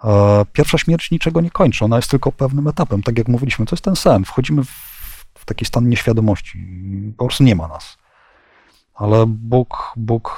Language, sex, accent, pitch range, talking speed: Polish, male, native, 105-130 Hz, 175 wpm